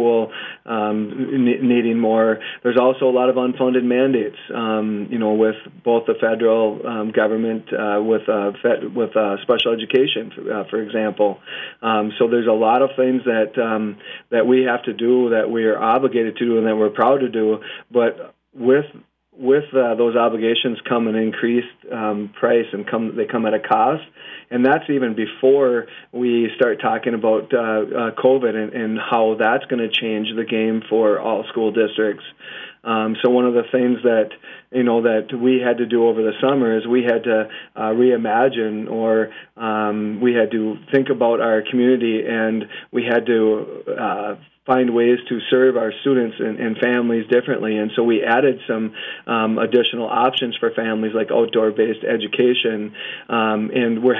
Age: 40-59